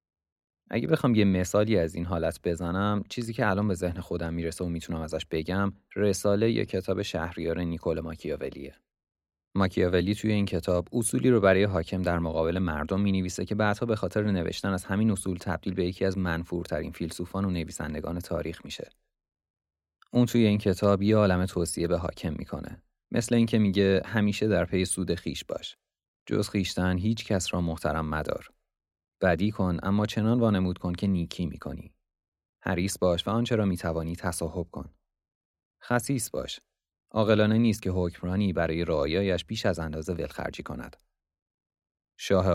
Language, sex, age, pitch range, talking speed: Persian, male, 30-49, 85-105 Hz, 160 wpm